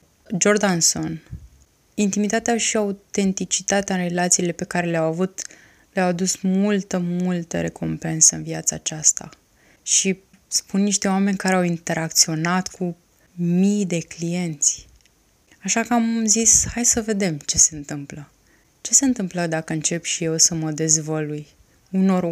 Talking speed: 135 wpm